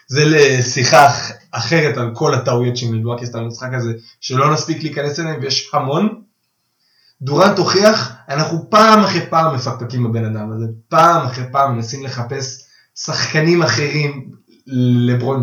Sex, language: male, Hebrew